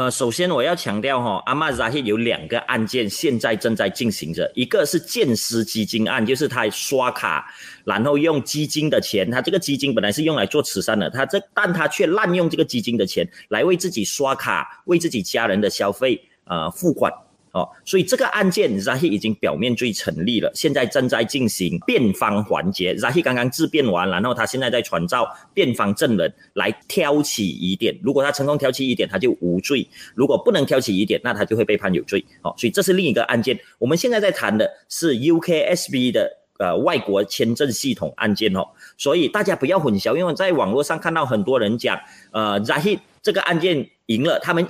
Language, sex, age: Chinese, male, 30-49